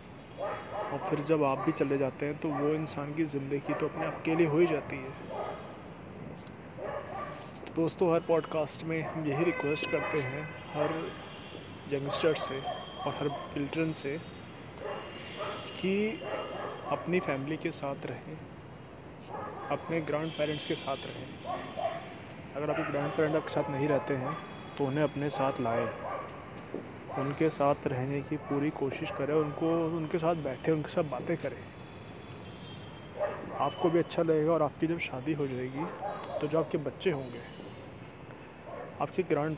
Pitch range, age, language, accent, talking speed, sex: 140-165 Hz, 30-49, Hindi, native, 145 wpm, male